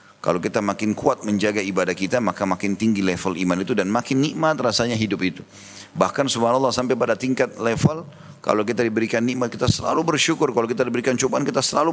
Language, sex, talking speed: Indonesian, male, 190 wpm